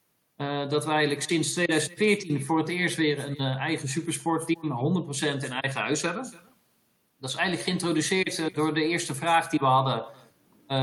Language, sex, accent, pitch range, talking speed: English, male, Dutch, 125-150 Hz, 175 wpm